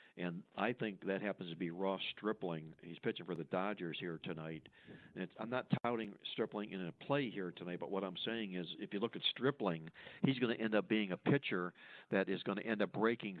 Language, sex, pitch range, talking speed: English, male, 95-120 Hz, 235 wpm